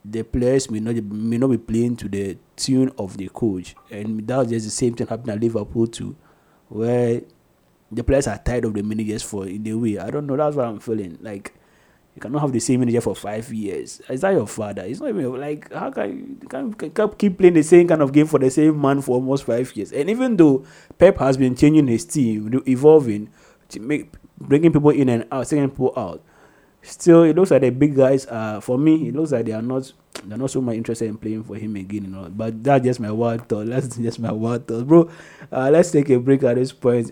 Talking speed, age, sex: 240 wpm, 30-49, male